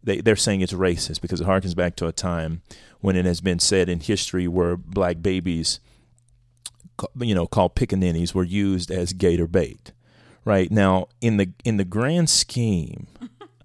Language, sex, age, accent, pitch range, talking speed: English, male, 40-59, American, 95-125 Hz, 170 wpm